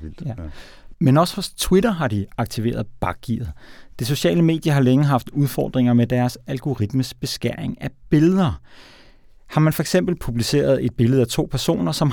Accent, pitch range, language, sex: native, 115-140 Hz, Danish, male